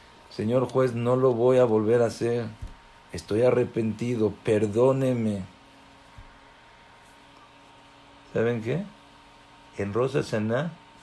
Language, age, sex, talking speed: English, 50-69, male, 90 wpm